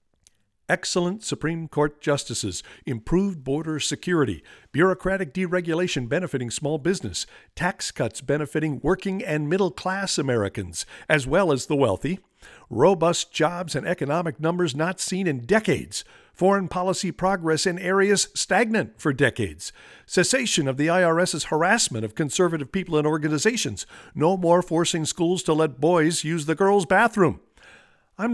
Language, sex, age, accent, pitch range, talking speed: English, male, 50-69, American, 130-185 Hz, 135 wpm